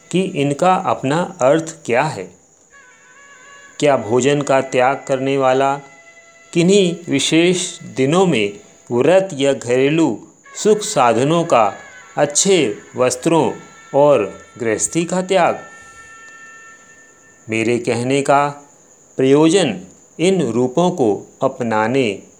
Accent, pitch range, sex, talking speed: native, 125-175 Hz, male, 95 wpm